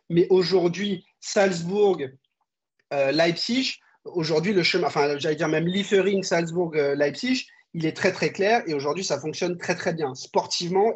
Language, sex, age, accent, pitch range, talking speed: French, male, 40-59, French, 155-200 Hz, 140 wpm